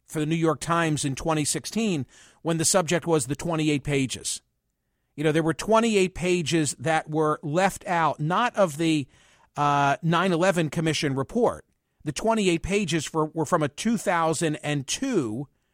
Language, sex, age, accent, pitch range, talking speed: English, male, 50-69, American, 150-185 Hz, 145 wpm